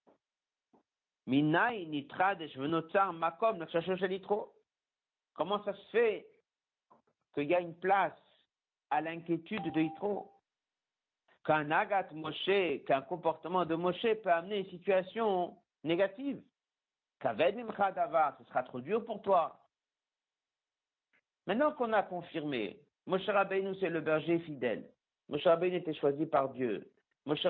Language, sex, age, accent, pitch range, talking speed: French, male, 50-69, French, 155-195 Hz, 100 wpm